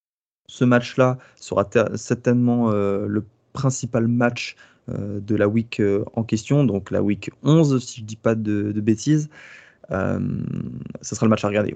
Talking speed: 180 wpm